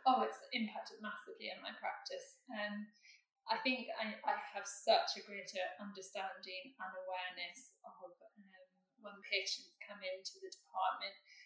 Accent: British